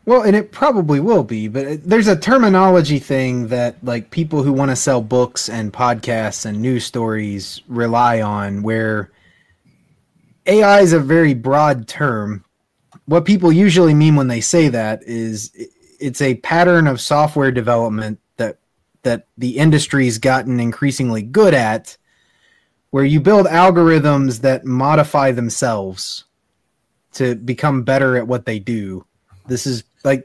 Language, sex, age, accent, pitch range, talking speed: English, male, 20-39, American, 120-155 Hz, 145 wpm